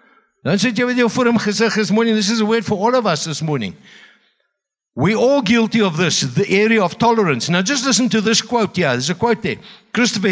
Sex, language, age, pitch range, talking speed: male, English, 60-79, 165-225 Hz, 225 wpm